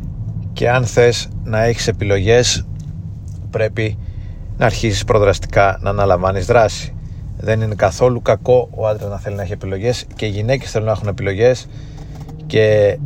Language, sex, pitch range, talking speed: Greek, male, 100-120 Hz, 145 wpm